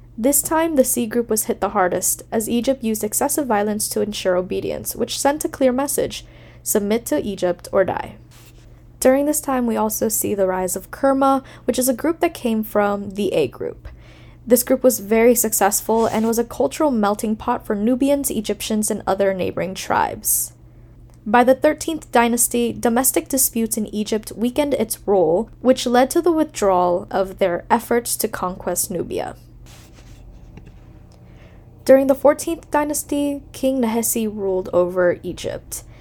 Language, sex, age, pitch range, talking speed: English, female, 10-29, 200-265 Hz, 160 wpm